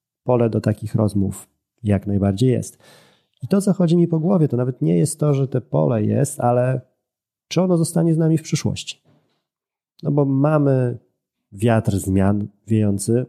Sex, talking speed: male, 165 wpm